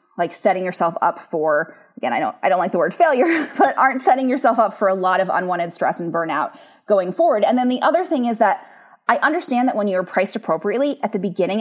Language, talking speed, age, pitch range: English, 240 wpm, 20-39, 180-240 Hz